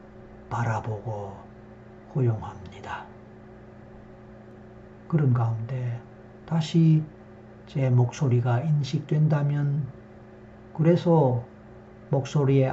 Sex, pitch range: male, 115-135 Hz